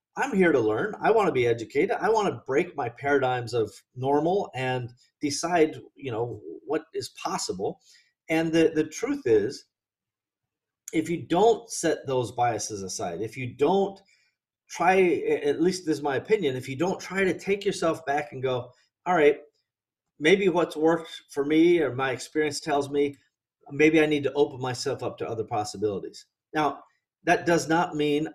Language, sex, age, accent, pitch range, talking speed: English, male, 40-59, American, 135-185 Hz, 175 wpm